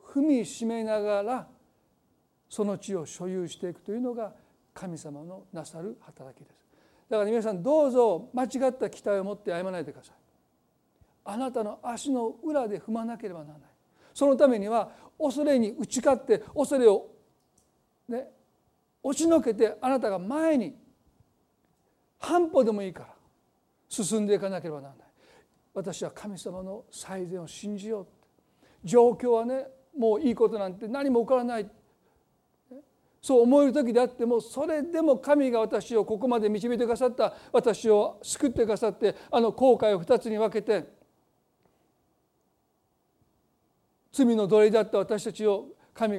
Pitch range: 185-250 Hz